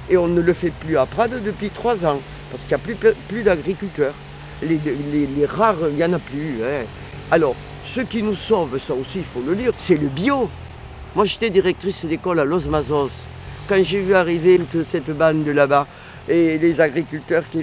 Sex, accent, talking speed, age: male, French, 210 wpm, 50-69